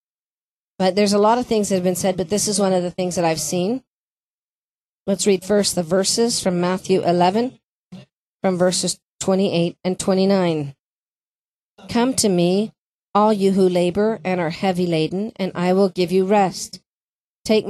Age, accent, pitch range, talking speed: 40-59, American, 180-210 Hz, 175 wpm